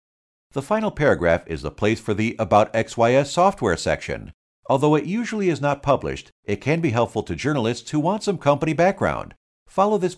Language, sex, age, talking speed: English, male, 50-69, 185 wpm